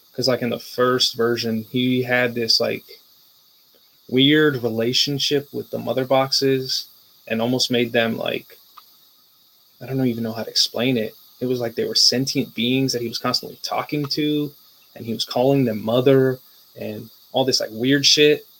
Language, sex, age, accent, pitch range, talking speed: English, male, 20-39, American, 115-130 Hz, 175 wpm